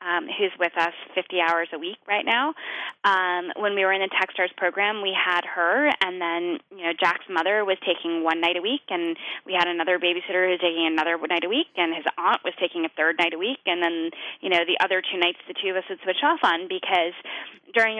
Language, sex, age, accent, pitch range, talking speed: English, female, 20-39, American, 170-210 Hz, 245 wpm